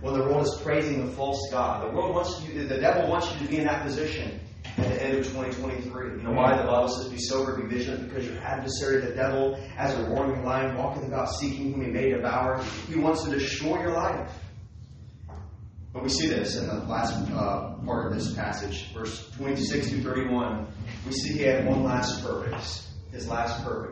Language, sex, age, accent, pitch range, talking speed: English, male, 30-49, American, 110-135 Hz, 210 wpm